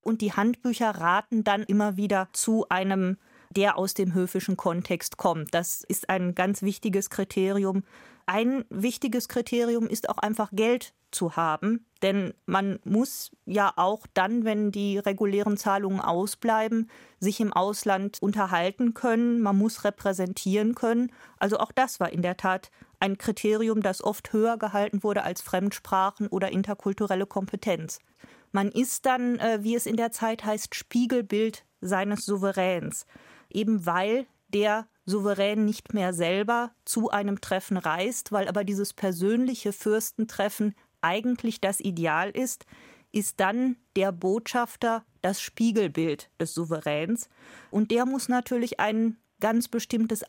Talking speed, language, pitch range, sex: 140 wpm, German, 190-225 Hz, female